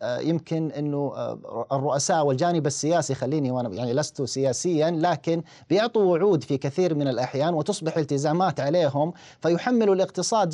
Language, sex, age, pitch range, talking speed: Arabic, male, 40-59, 135-160 Hz, 125 wpm